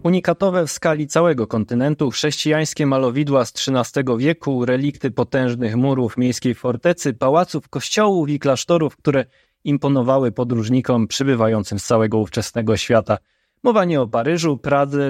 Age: 20-39